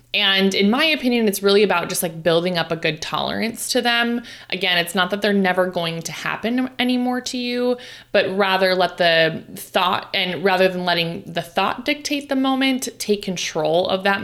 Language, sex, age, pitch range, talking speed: English, female, 20-39, 175-230 Hz, 195 wpm